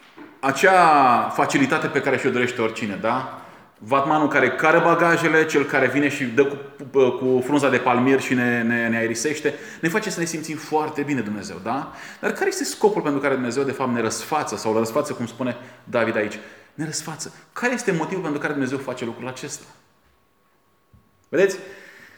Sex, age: male, 20-39